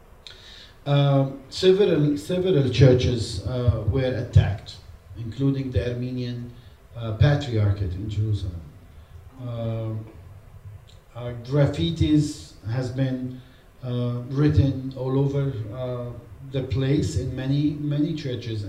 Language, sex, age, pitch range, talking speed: English, male, 40-59, 105-145 Hz, 95 wpm